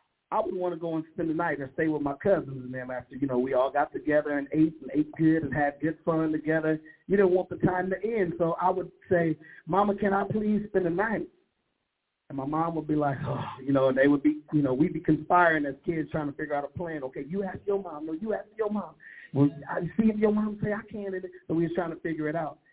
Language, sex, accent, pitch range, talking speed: English, male, American, 150-185 Hz, 285 wpm